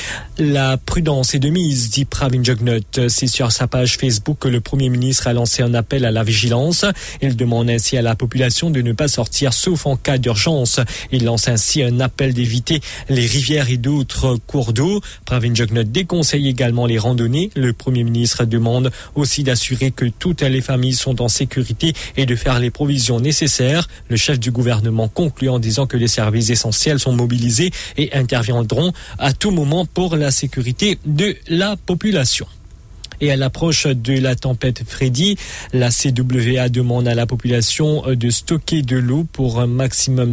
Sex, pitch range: male, 120-145 Hz